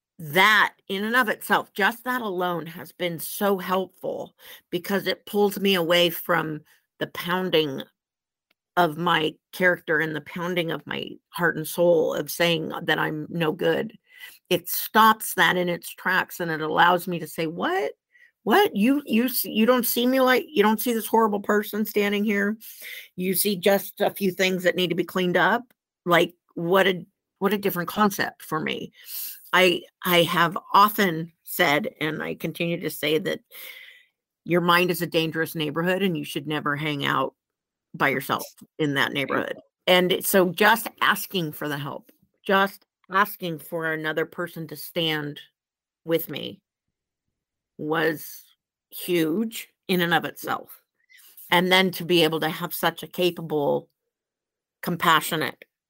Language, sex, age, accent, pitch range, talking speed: English, female, 50-69, American, 160-205 Hz, 160 wpm